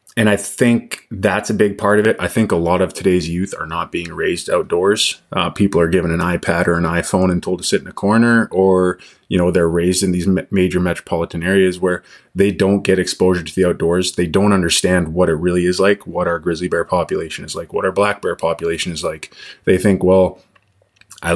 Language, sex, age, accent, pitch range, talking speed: English, male, 20-39, American, 85-100 Hz, 230 wpm